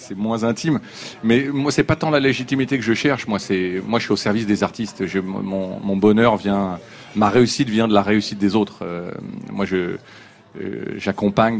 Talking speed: 205 wpm